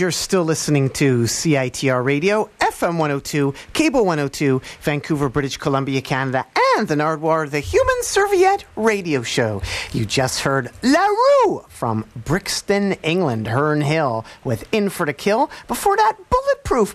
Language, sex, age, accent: English, male, 40-59, American